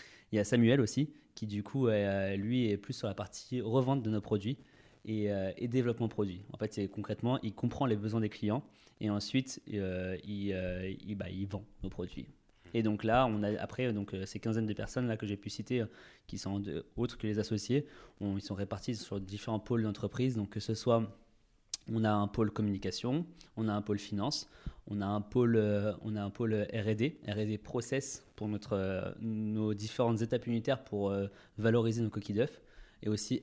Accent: French